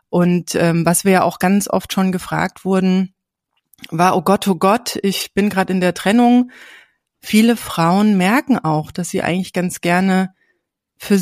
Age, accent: 30-49, German